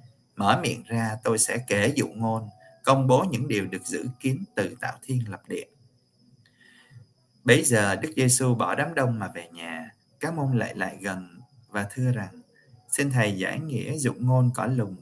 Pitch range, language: 110-130 Hz, Vietnamese